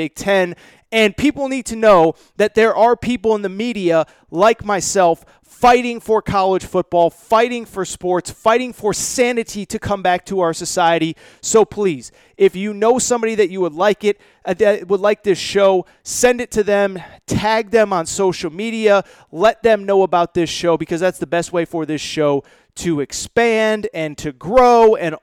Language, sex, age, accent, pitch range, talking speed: English, male, 30-49, American, 170-225 Hz, 185 wpm